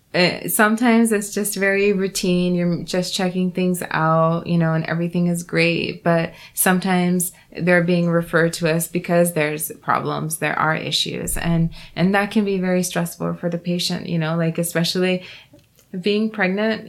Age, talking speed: 20-39, 160 wpm